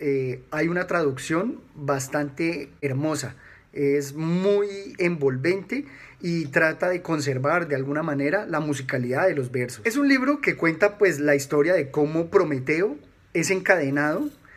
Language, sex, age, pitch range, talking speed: Spanish, male, 30-49, 140-180 Hz, 140 wpm